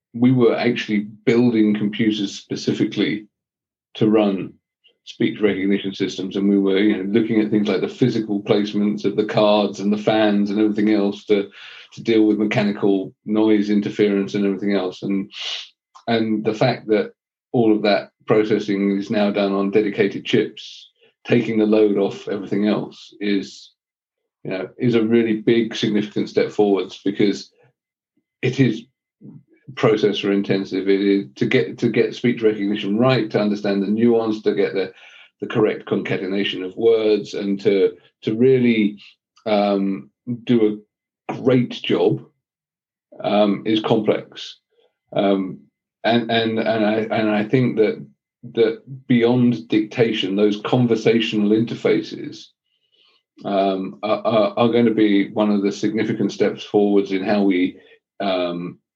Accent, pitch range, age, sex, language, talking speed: British, 100-115 Hz, 40-59, male, English, 145 wpm